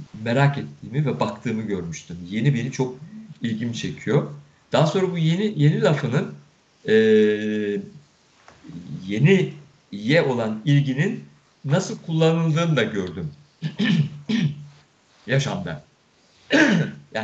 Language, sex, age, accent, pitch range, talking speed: Turkish, male, 50-69, native, 125-160 Hz, 95 wpm